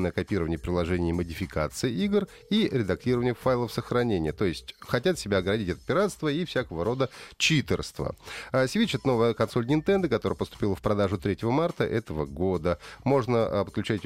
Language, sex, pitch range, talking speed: Russian, male, 95-135 Hz, 155 wpm